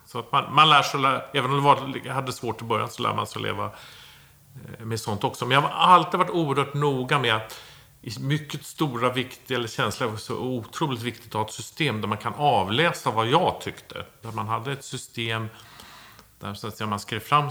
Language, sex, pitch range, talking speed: Swedish, male, 110-140 Hz, 215 wpm